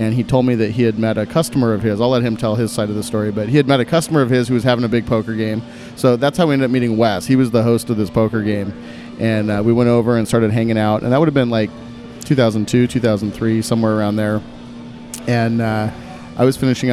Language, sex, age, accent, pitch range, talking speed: English, male, 30-49, American, 110-120 Hz, 275 wpm